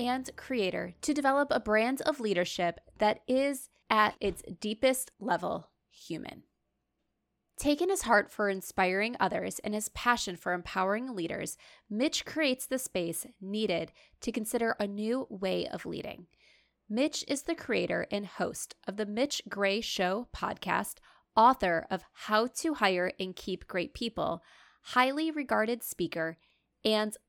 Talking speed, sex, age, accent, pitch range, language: 140 wpm, female, 20-39, American, 190-255 Hz, English